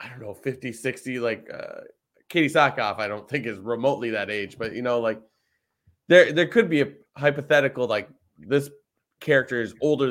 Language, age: English, 20-39